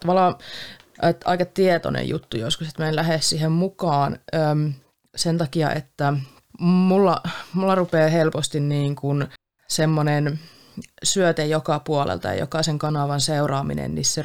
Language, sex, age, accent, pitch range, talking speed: Finnish, female, 30-49, native, 145-175 Hz, 120 wpm